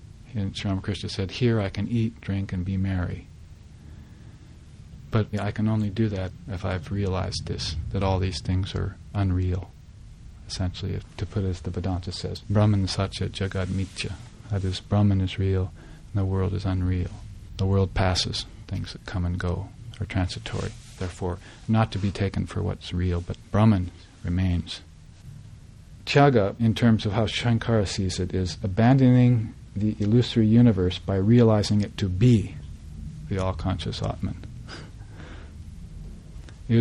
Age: 40-59